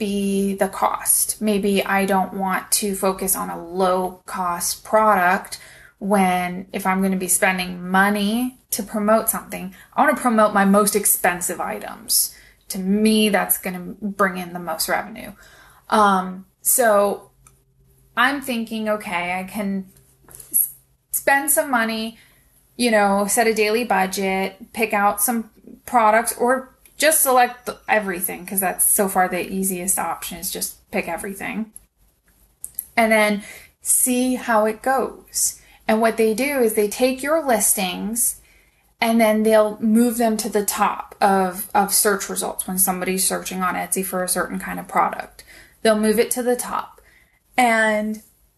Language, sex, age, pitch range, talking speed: English, female, 20-39, 190-225 Hz, 150 wpm